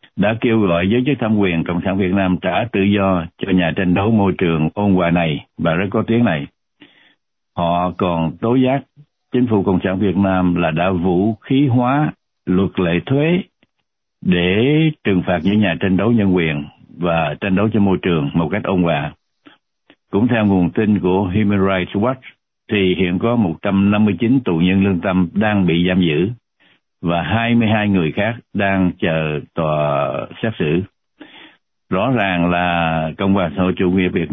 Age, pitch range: 60-79, 90-110 Hz